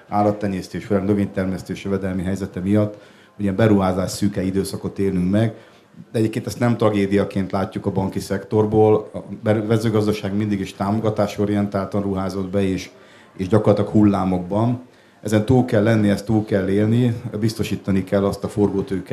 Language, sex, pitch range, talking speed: Hungarian, male, 95-105 Hz, 140 wpm